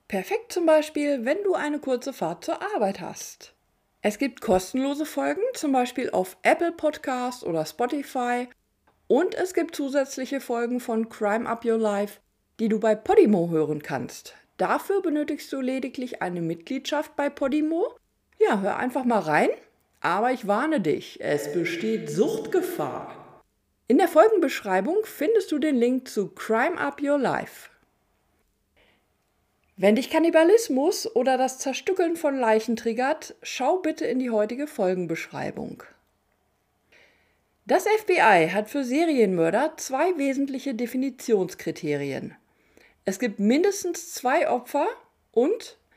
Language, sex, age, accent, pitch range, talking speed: German, female, 50-69, German, 220-310 Hz, 130 wpm